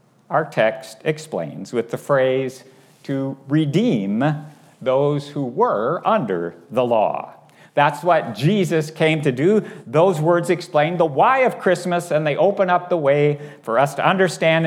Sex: male